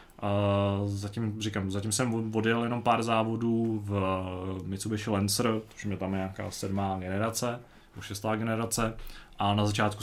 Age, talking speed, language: 20-39, 145 wpm, Czech